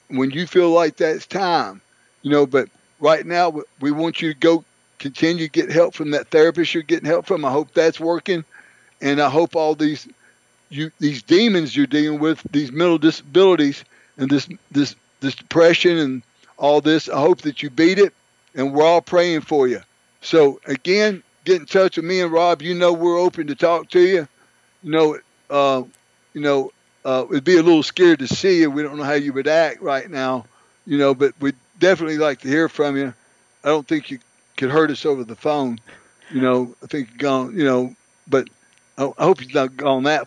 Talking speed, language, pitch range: 210 wpm, English, 140-170 Hz